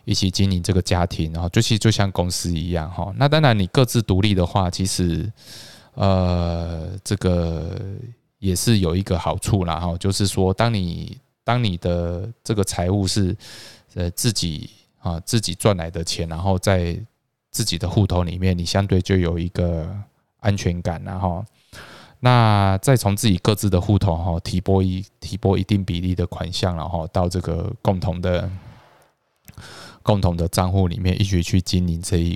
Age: 20-39